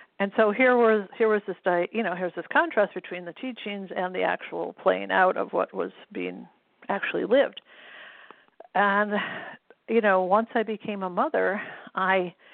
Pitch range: 180-220 Hz